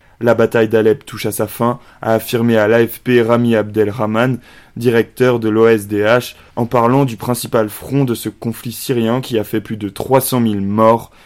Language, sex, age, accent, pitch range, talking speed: French, male, 20-39, French, 105-120 Hz, 180 wpm